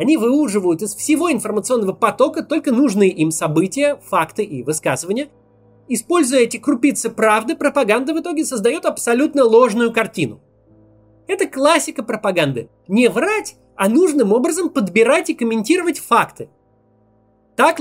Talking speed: 125 wpm